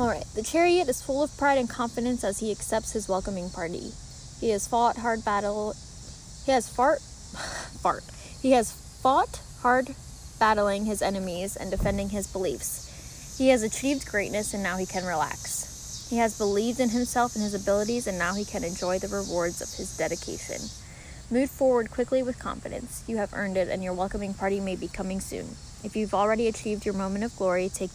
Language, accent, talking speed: English, American, 190 wpm